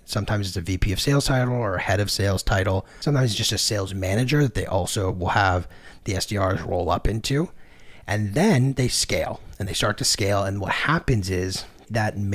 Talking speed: 210 wpm